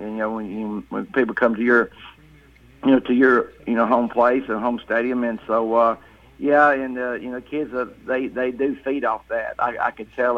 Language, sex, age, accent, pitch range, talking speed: English, male, 60-79, American, 110-125 Hz, 235 wpm